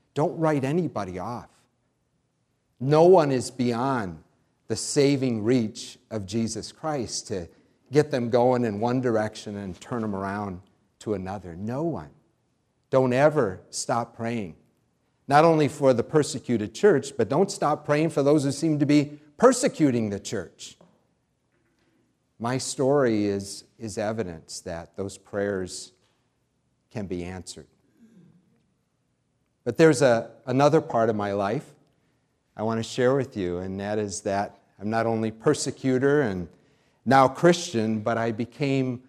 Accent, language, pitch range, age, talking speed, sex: American, English, 105-145 Hz, 50-69, 140 wpm, male